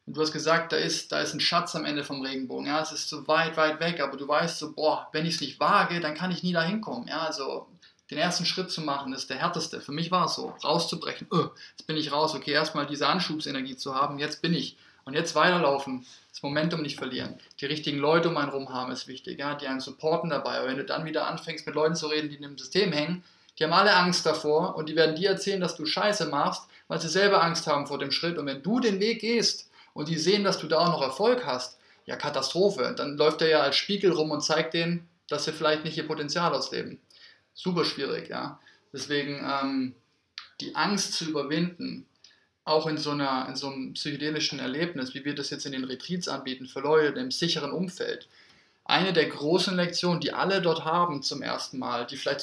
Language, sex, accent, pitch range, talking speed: German, male, German, 140-170 Hz, 235 wpm